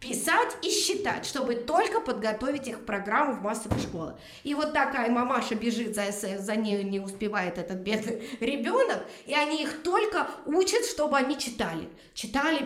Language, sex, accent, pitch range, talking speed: Russian, female, native, 220-305 Hz, 160 wpm